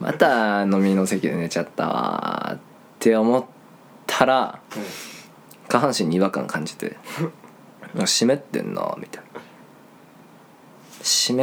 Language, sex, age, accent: Japanese, male, 20-39, native